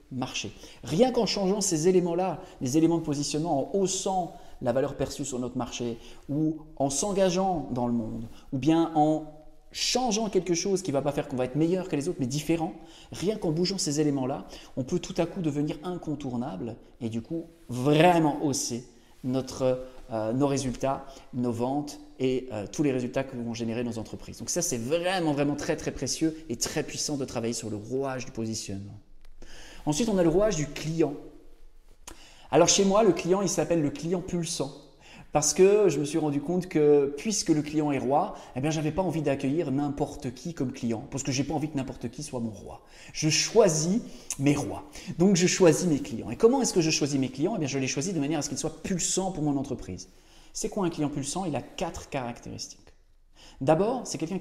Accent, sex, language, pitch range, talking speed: French, male, French, 130-170 Hz, 210 wpm